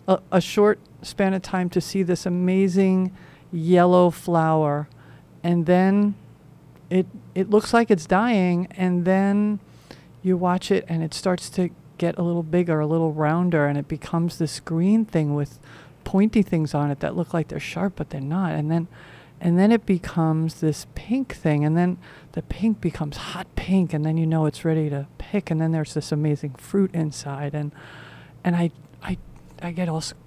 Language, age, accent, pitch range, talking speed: English, 40-59, American, 150-185 Hz, 185 wpm